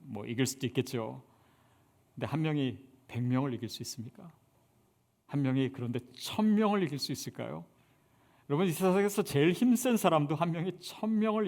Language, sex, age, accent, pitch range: Korean, male, 40-59, native, 130-200 Hz